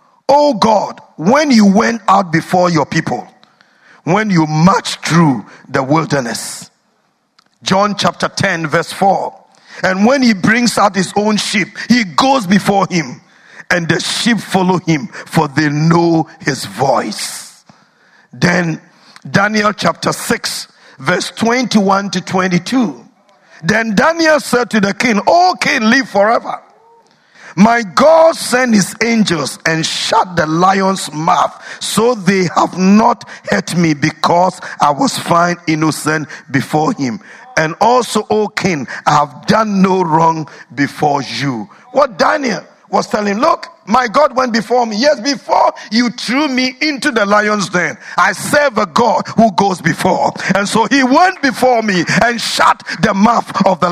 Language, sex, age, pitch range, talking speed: English, male, 50-69, 175-240 Hz, 150 wpm